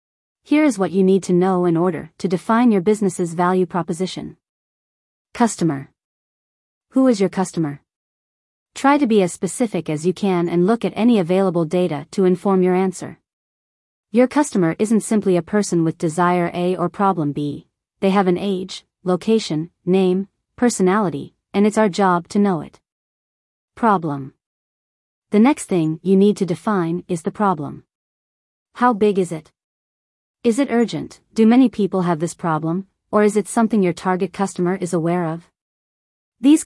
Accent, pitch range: American, 175-210 Hz